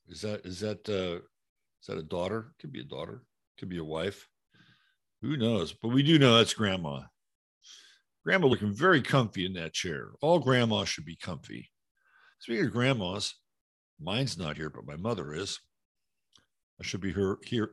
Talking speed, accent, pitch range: 180 wpm, American, 95-125 Hz